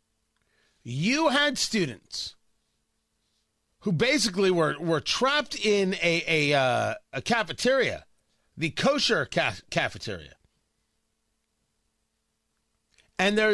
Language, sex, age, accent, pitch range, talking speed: English, male, 40-59, American, 185-255 Hz, 90 wpm